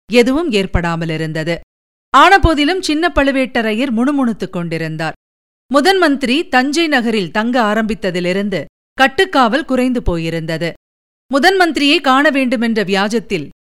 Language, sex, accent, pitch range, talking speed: Tamil, female, native, 195-290 Hz, 85 wpm